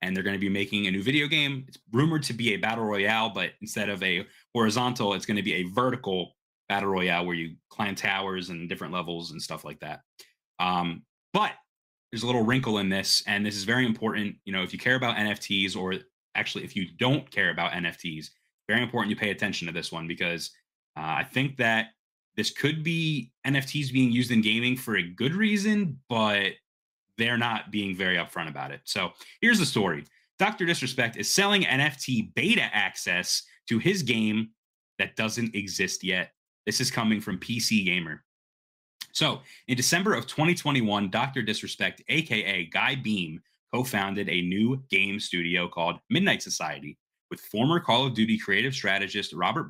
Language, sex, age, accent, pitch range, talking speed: English, male, 20-39, American, 95-130 Hz, 180 wpm